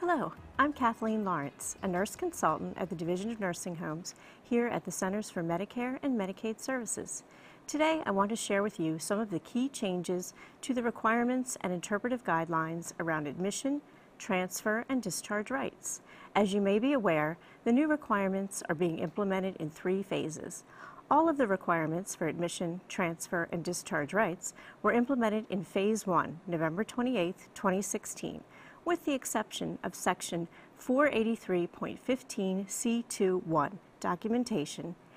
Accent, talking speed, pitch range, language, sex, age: American, 145 wpm, 175-235 Hz, English, female, 40-59